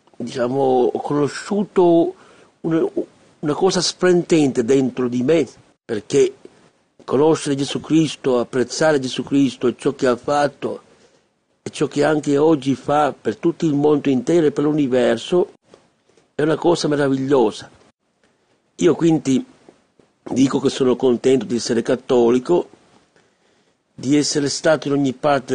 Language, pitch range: Italian, 130-160 Hz